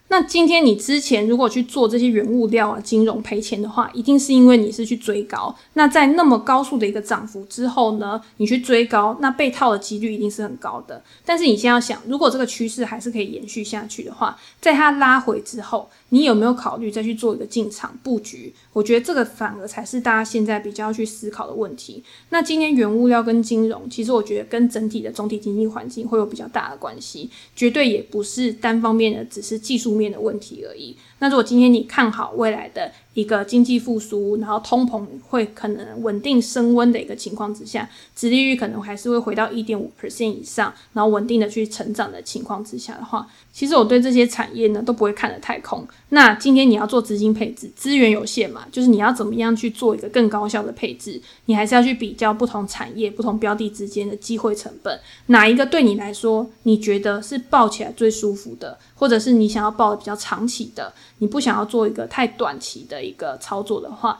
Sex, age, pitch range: female, 20-39, 215-245 Hz